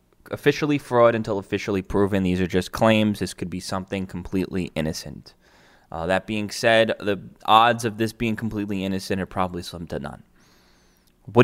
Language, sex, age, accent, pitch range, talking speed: English, male, 10-29, American, 95-110 Hz, 170 wpm